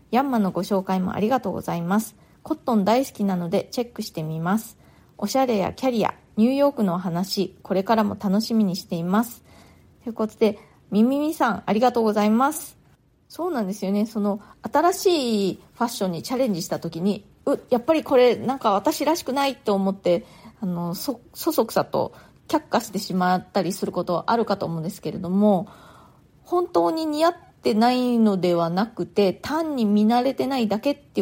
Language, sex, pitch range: Japanese, female, 185-245 Hz